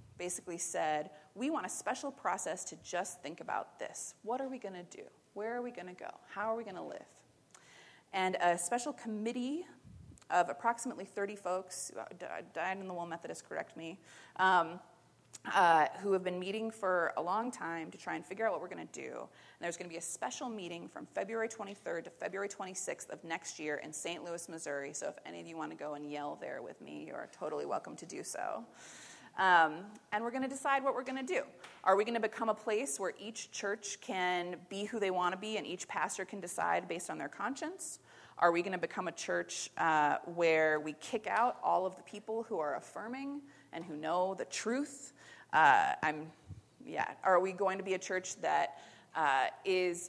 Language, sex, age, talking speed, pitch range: English, female, 30-49, 210 wpm, 170-225 Hz